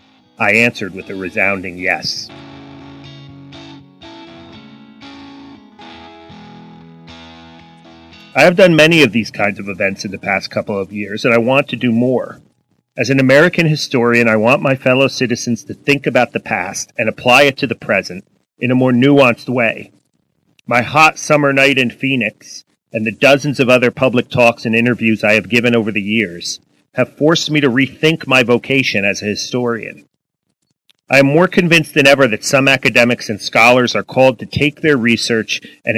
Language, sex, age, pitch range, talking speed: English, male, 40-59, 105-140 Hz, 170 wpm